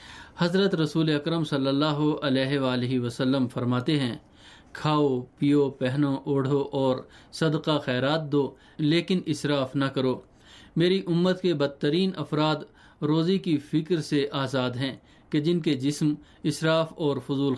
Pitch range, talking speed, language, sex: 130-160 Hz, 135 wpm, Urdu, male